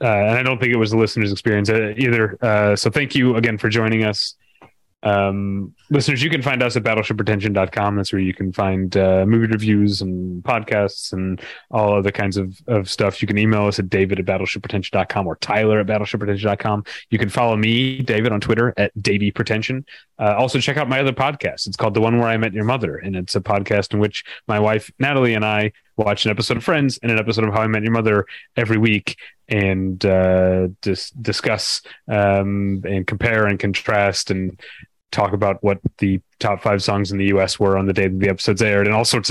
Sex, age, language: male, 30-49, English